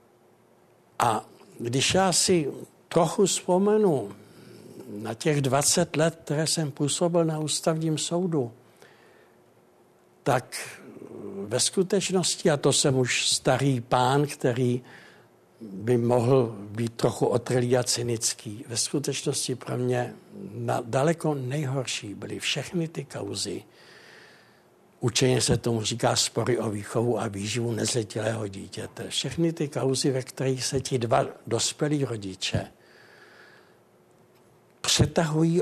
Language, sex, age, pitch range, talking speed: Czech, male, 60-79, 115-150 Hz, 110 wpm